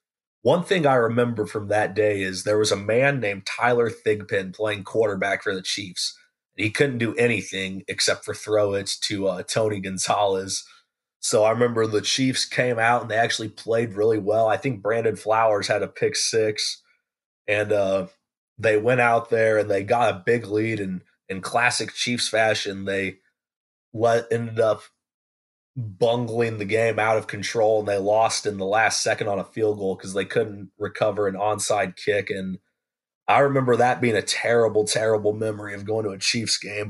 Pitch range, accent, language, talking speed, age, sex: 100-115 Hz, American, English, 185 wpm, 20-39, male